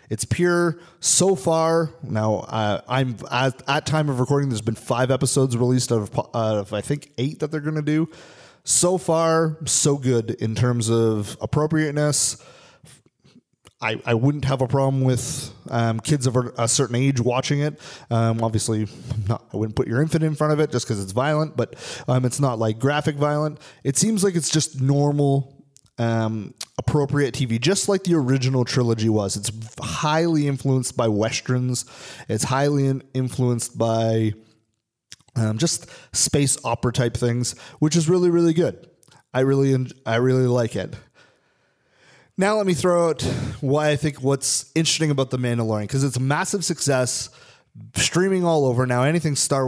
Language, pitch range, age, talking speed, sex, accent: English, 115-150 Hz, 30-49, 170 wpm, male, American